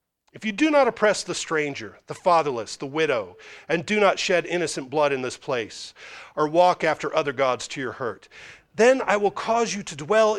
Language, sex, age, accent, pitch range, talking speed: English, male, 40-59, American, 165-230 Hz, 200 wpm